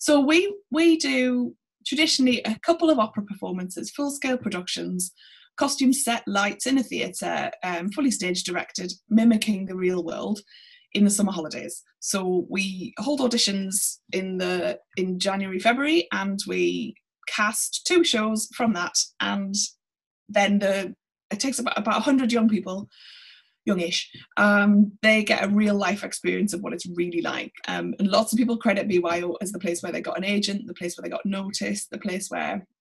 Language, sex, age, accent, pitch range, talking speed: English, female, 20-39, British, 185-245 Hz, 170 wpm